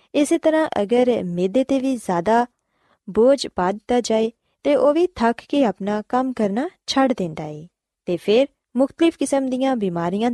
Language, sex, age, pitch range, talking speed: Punjabi, female, 20-39, 190-260 Hz, 165 wpm